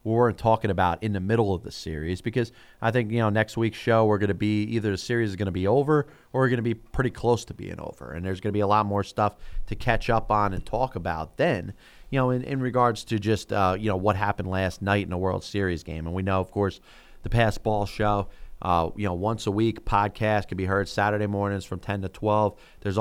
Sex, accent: male, American